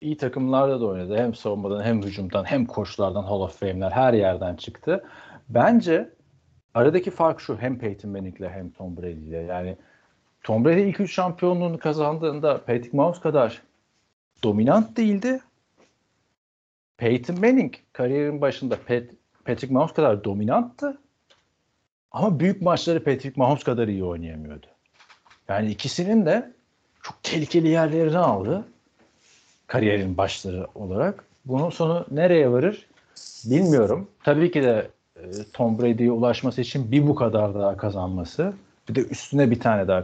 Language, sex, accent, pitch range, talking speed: Turkish, male, native, 100-155 Hz, 130 wpm